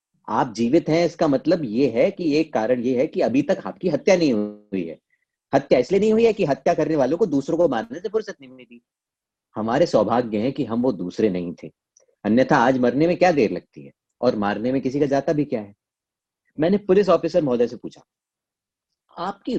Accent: native